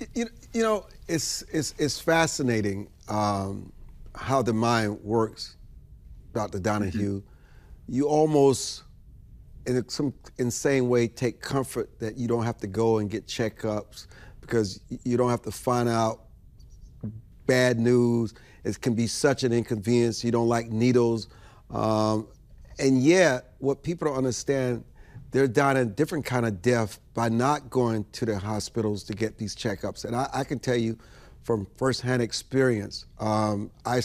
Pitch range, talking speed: 110-130 Hz, 150 wpm